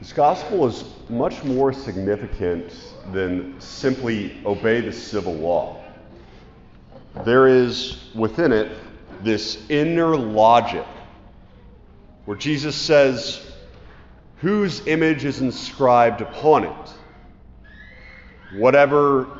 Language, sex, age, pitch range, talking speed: English, male, 40-59, 110-140 Hz, 90 wpm